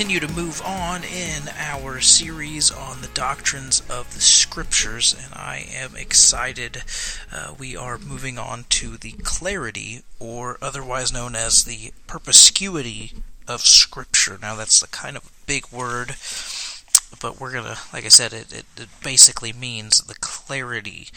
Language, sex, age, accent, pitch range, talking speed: English, male, 30-49, American, 110-135 Hz, 150 wpm